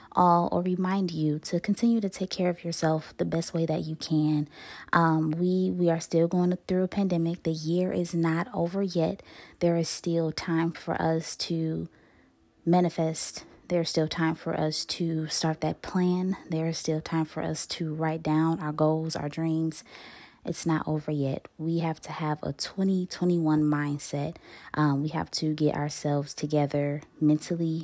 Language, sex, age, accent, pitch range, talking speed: English, female, 20-39, American, 155-170 Hz, 175 wpm